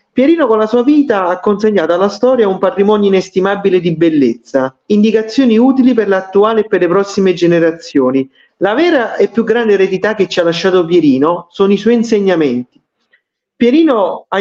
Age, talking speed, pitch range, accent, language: 40-59, 165 wpm, 190-250 Hz, native, Italian